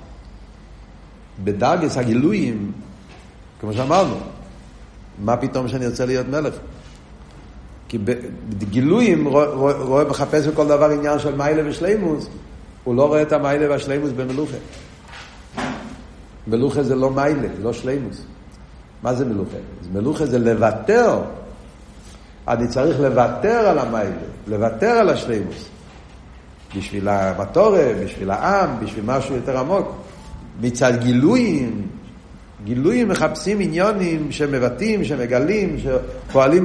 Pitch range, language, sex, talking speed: 120-190 Hz, Hebrew, male, 105 wpm